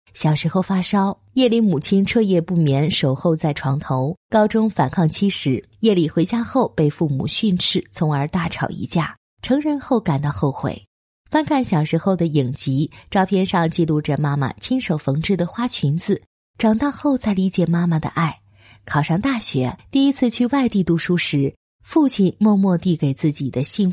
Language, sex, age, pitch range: Chinese, female, 20-39, 150-215 Hz